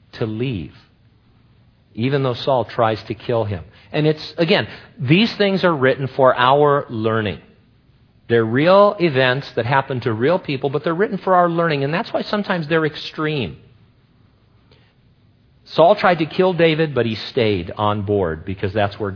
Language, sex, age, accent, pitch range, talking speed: English, male, 50-69, American, 105-140 Hz, 165 wpm